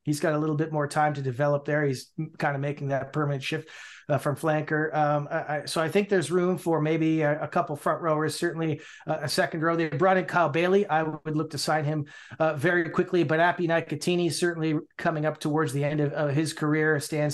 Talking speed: 225 wpm